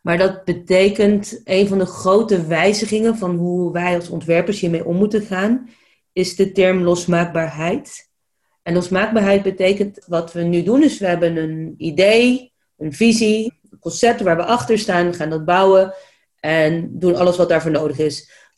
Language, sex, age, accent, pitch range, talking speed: English, female, 30-49, Dutch, 170-205 Hz, 170 wpm